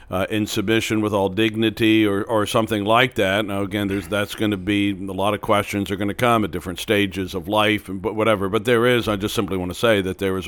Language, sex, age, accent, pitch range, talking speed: English, male, 60-79, American, 95-110 Hz, 265 wpm